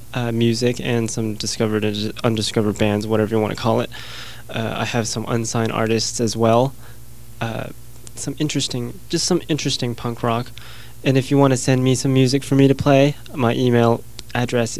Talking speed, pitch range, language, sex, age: 185 wpm, 115-125 Hz, English, male, 20-39